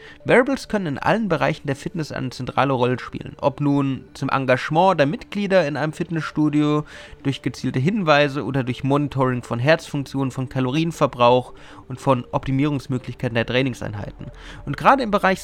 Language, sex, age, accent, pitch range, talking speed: German, male, 30-49, German, 130-170 Hz, 150 wpm